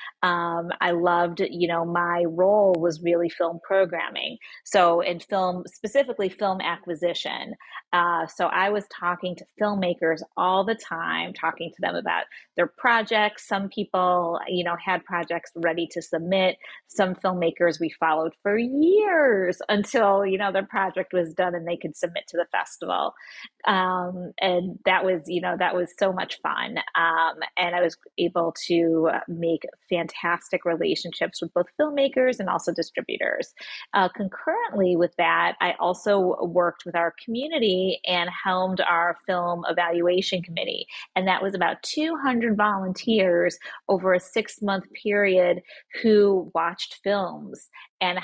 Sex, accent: female, American